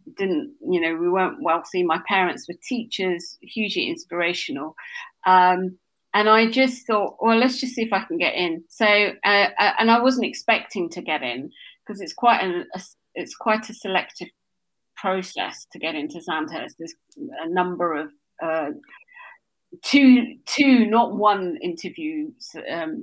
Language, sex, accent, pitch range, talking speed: English, female, British, 175-255 Hz, 155 wpm